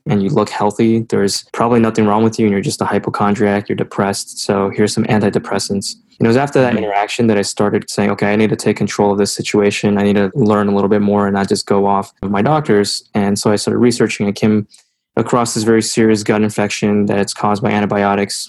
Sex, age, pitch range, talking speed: male, 20-39, 100-115 Hz, 235 wpm